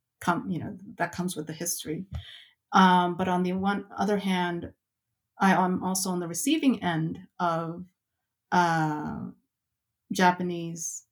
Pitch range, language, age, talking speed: 170-200 Hz, English, 30-49, 135 wpm